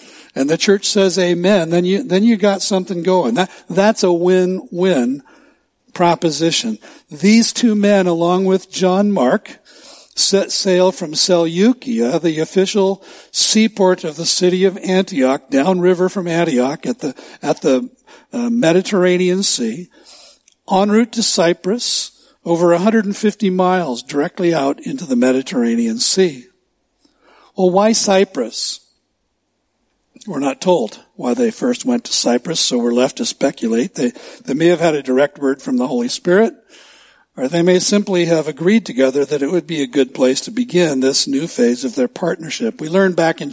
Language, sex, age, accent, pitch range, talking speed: English, male, 60-79, American, 165-210 Hz, 155 wpm